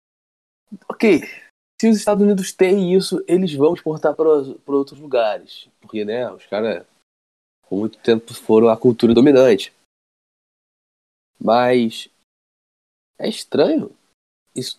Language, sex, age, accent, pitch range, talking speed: Portuguese, male, 20-39, Brazilian, 115-150 Hz, 125 wpm